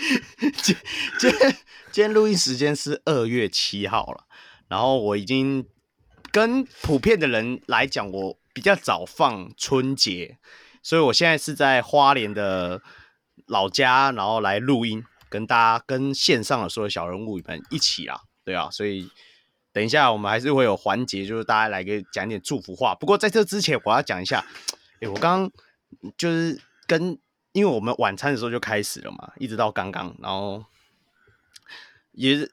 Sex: male